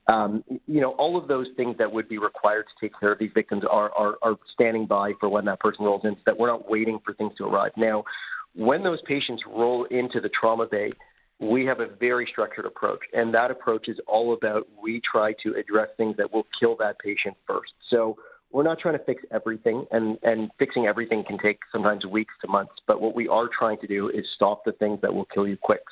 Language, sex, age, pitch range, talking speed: English, male, 40-59, 105-120 Hz, 235 wpm